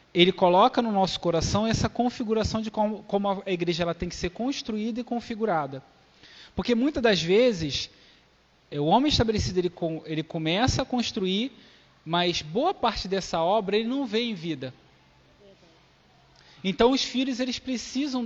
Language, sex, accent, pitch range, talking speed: Portuguese, male, Brazilian, 165-220 Hz, 150 wpm